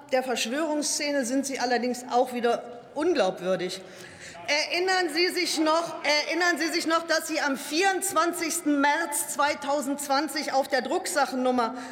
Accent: German